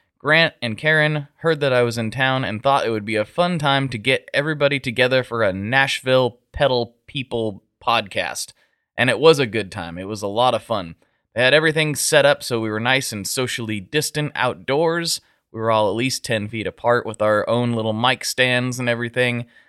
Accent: American